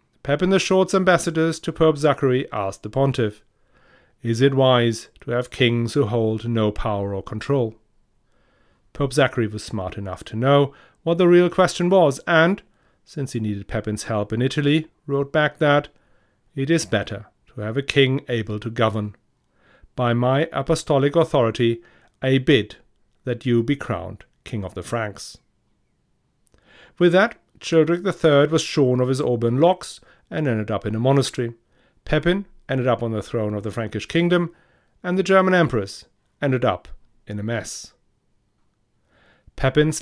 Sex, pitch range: male, 110-150 Hz